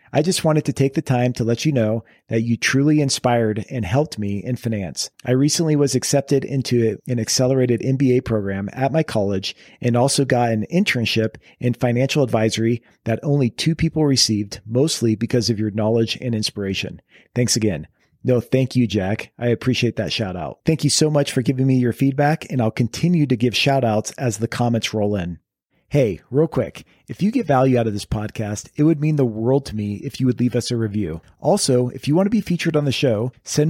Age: 40-59